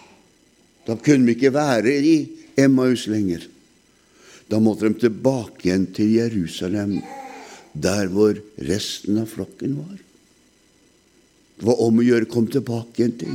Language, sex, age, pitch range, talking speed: Danish, male, 60-79, 100-125 Hz, 115 wpm